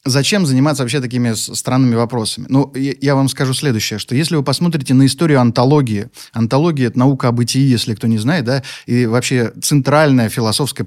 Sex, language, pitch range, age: male, Russian, 120-155 Hz, 20-39